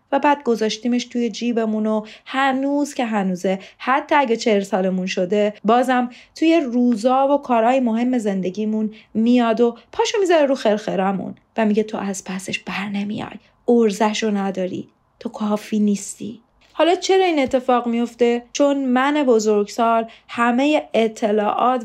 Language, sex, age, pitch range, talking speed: Persian, female, 30-49, 205-255 Hz, 135 wpm